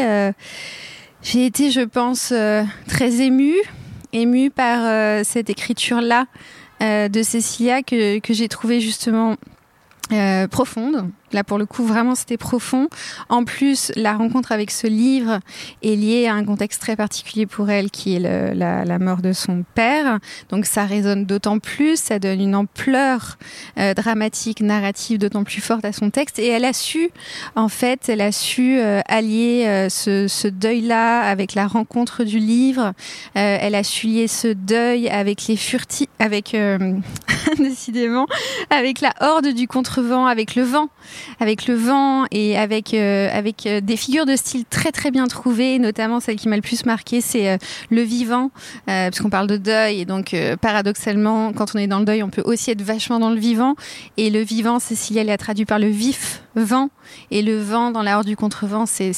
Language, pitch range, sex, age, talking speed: French, 205-245 Hz, female, 20-39, 185 wpm